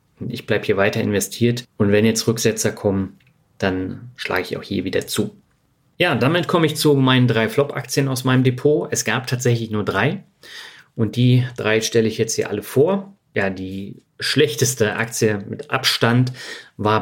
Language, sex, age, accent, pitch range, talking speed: German, male, 40-59, German, 105-125 Hz, 175 wpm